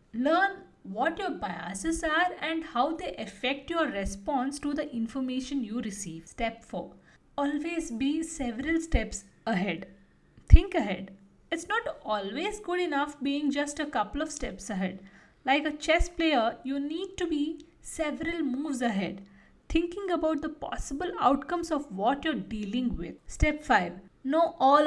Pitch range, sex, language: 240-315 Hz, female, English